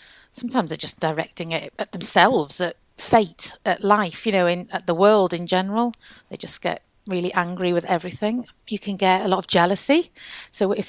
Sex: female